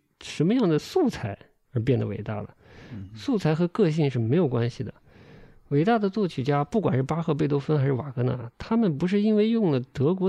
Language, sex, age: Chinese, male, 50-69